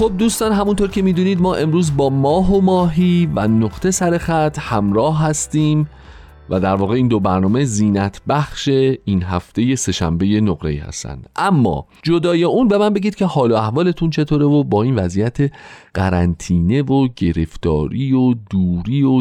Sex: male